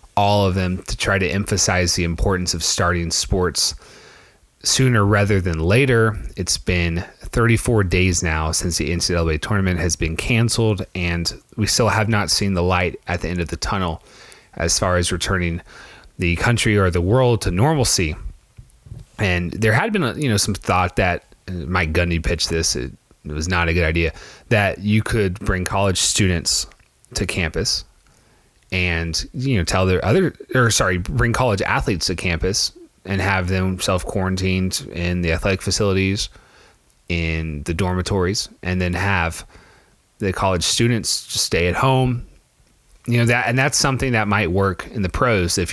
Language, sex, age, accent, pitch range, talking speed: English, male, 30-49, American, 85-105 Hz, 165 wpm